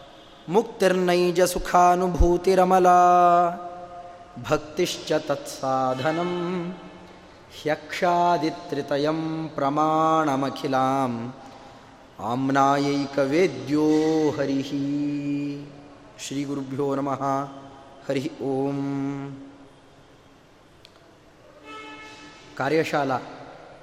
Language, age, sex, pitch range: Kannada, 30-49, male, 140-180 Hz